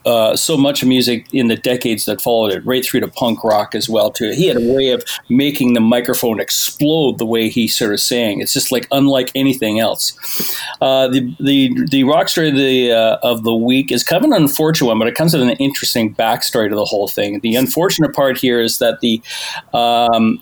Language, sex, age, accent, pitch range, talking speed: English, male, 40-59, American, 115-135 Hz, 225 wpm